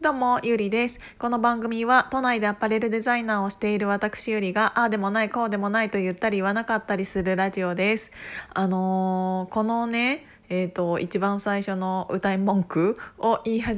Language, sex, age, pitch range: Japanese, female, 20-39, 185-235 Hz